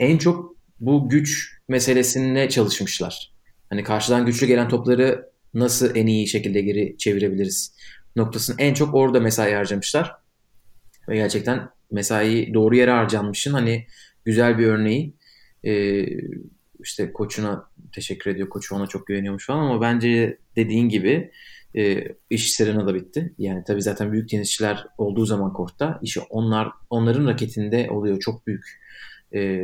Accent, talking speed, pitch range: native, 135 wpm, 105-130 Hz